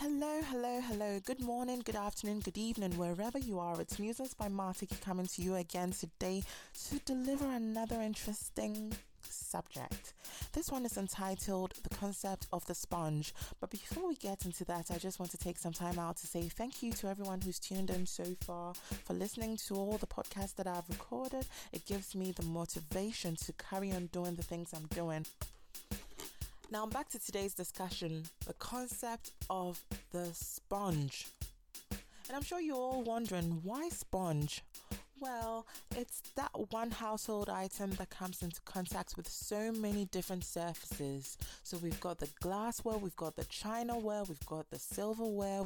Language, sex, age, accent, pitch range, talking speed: English, female, 20-39, British, 175-220 Hz, 170 wpm